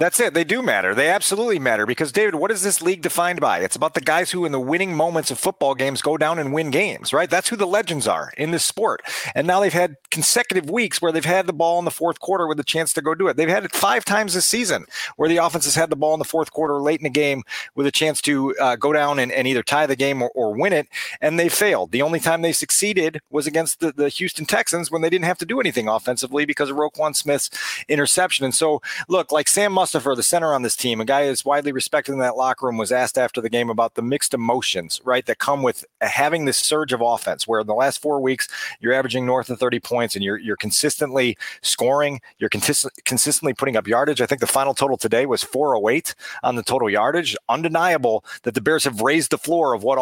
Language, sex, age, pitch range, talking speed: English, male, 40-59, 135-170 Hz, 255 wpm